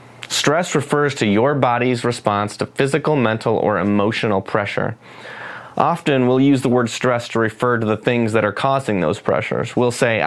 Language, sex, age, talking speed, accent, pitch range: English, male, 30-49, 175 wpm, American, 110-130 Hz